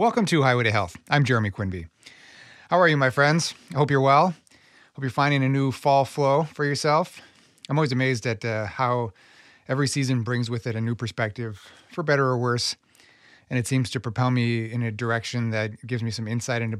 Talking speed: 210 wpm